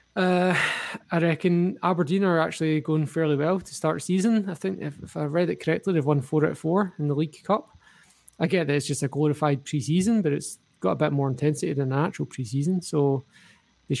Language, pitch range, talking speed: English, 145-180 Hz, 225 wpm